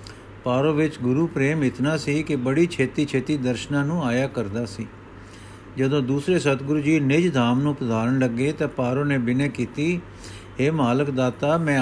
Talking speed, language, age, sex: 170 wpm, Punjabi, 50-69, male